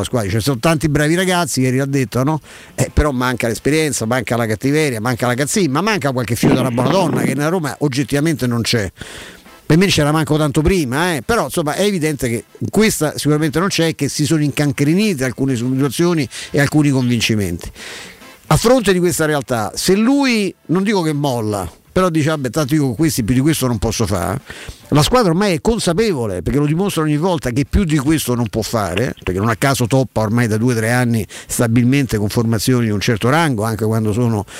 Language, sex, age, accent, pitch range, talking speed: Italian, male, 50-69, native, 115-155 Hz, 215 wpm